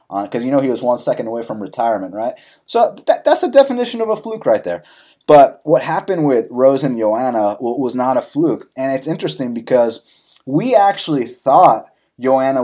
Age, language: 30-49, English